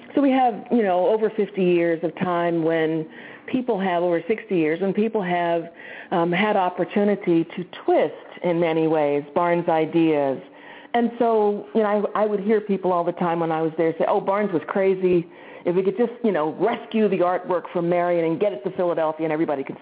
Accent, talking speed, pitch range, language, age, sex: American, 210 wpm, 165-205 Hz, English, 50-69, female